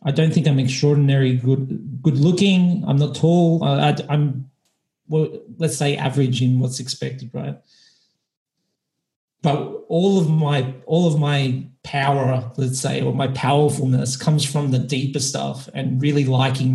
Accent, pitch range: Australian, 130-145 Hz